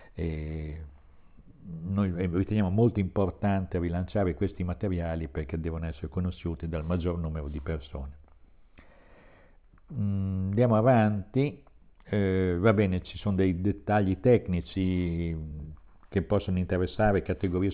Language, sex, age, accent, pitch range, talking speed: Italian, male, 50-69, native, 85-100 Hz, 110 wpm